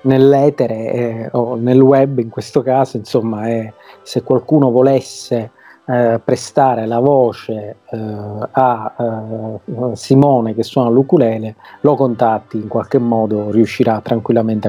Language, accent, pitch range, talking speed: Italian, native, 115-130 Hz, 125 wpm